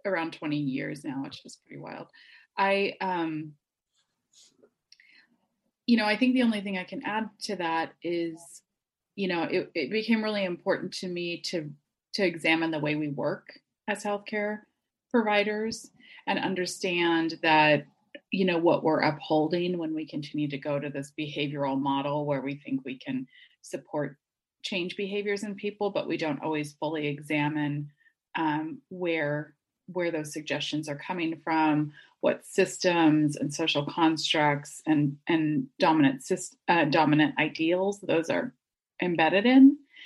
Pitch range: 150-195 Hz